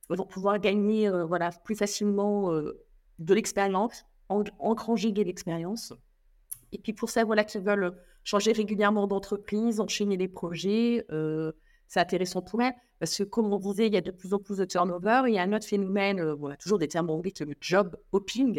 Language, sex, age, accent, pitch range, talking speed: French, female, 50-69, French, 165-210 Hz, 205 wpm